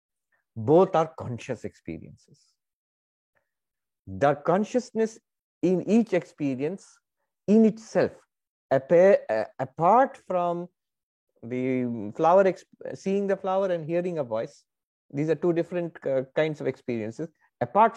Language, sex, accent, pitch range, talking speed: English, male, Indian, 130-200 Hz, 100 wpm